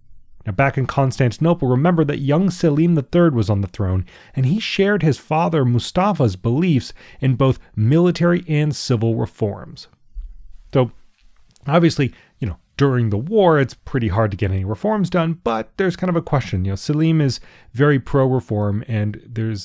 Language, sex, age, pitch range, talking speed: English, male, 30-49, 105-160 Hz, 170 wpm